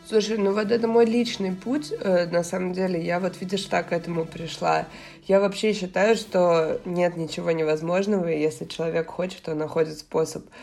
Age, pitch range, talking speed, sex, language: 20-39, 155-185 Hz, 180 wpm, female, Russian